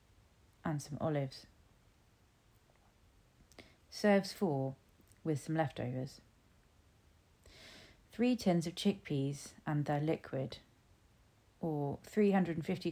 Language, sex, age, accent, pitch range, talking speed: English, female, 30-49, British, 110-160 Hz, 80 wpm